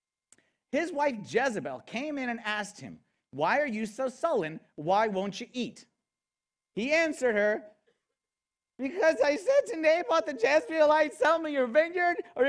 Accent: American